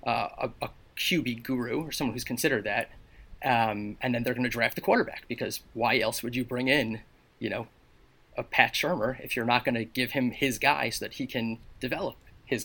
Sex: male